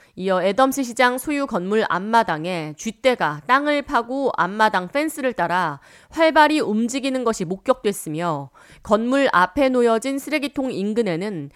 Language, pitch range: Korean, 180-260 Hz